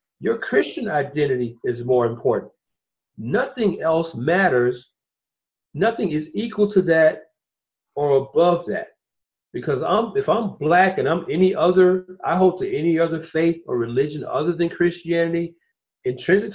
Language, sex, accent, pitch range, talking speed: English, male, American, 135-190 Hz, 140 wpm